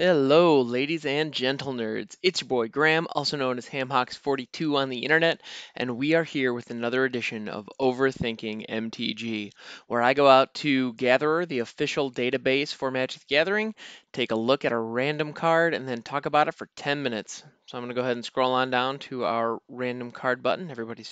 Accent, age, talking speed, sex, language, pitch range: American, 20-39, 200 wpm, male, English, 125-165 Hz